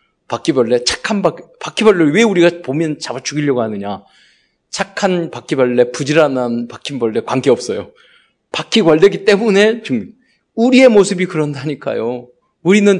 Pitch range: 140-215 Hz